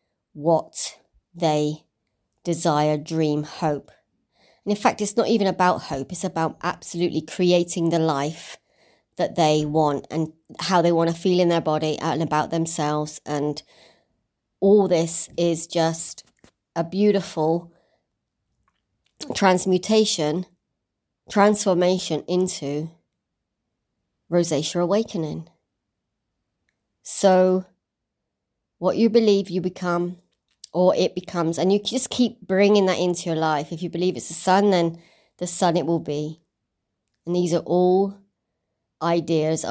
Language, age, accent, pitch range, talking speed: English, 30-49, British, 150-180 Hz, 125 wpm